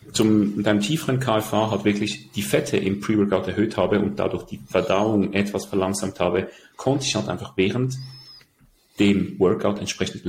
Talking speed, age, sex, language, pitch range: 155 wpm, 40-59, male, German, 95-110 Hz